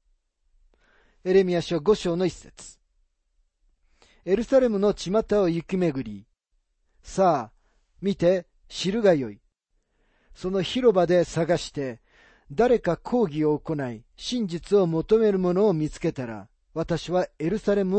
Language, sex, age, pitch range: Japanese, male, 40-59, 140-205 Hz